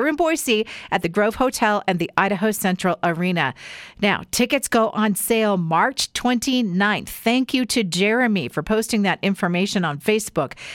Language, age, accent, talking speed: English, 40-59, American, 155 wpm